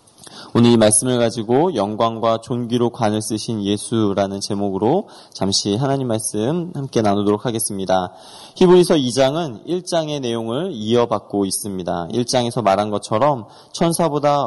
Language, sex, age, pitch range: Korean, male, 20-39, 110-145 Hz